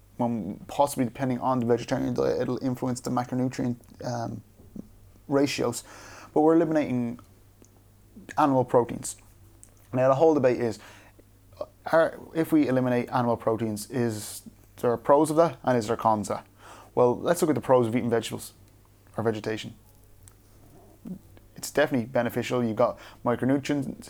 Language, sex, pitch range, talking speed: English, male, 110-125 Hz, 135 wpm